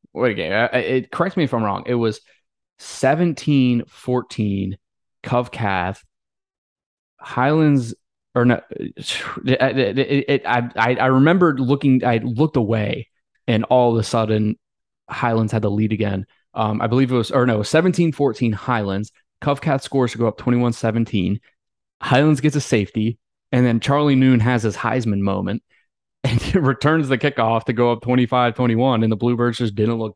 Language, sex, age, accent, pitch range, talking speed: English, male, 20-39, American, 105-130 Hz, 165 wpm